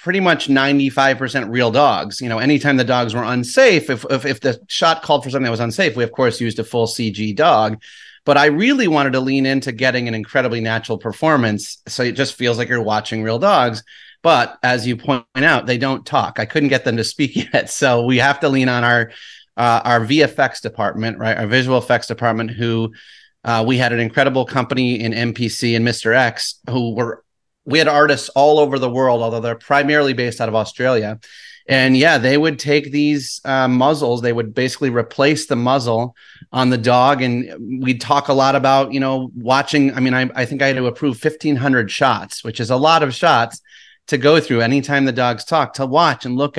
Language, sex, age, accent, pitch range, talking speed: English, male, 30-49, American, 115-145 Hz, 215 wpm